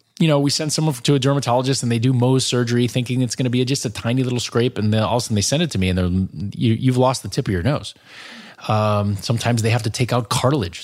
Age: 30-49